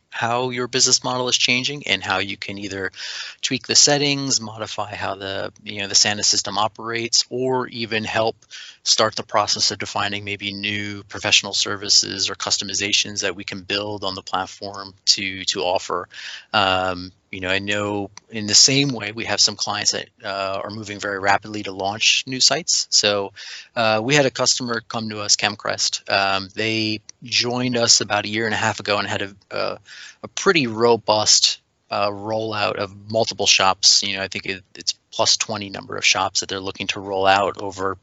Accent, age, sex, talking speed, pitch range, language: American, 30-49, male, 190 wpm, 100-120 Hz, English